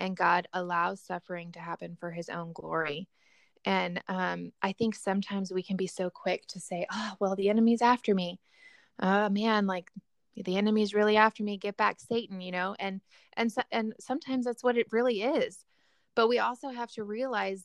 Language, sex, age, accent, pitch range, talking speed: English, female, 20-39, American, 185-215 Hz, 190 wpm